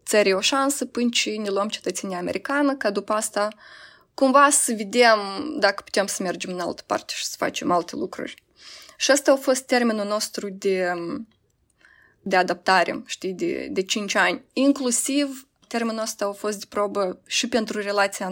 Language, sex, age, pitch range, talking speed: Romanian, female, 20-39, 205-265 Hz, 165 wpm